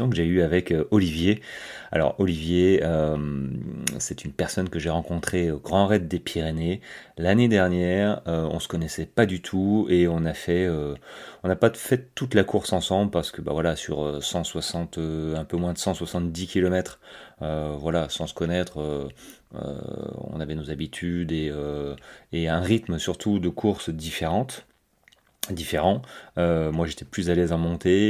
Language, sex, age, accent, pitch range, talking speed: French, male, 30-49, French, 80-90 Hz, 170 wpm